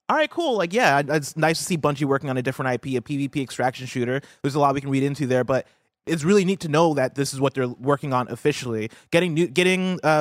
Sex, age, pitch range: male, 20-39, 125-155 Hz